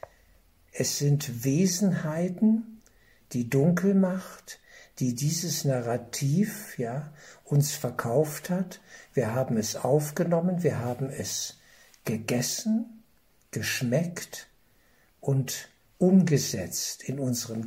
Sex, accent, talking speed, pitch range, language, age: male, German, 85 wpm, 120-150 Hz, German, 60-79